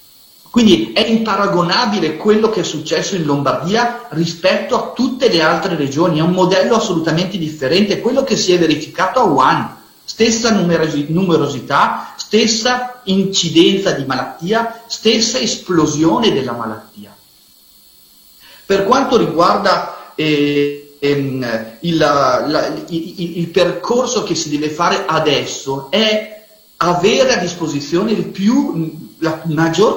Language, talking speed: Italian, 125 wpm